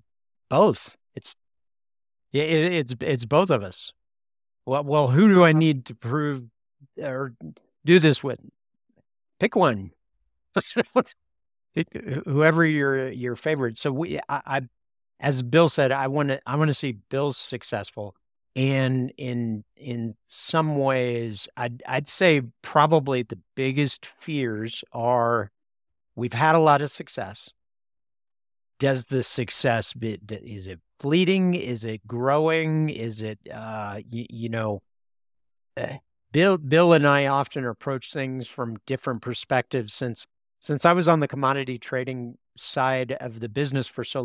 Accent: American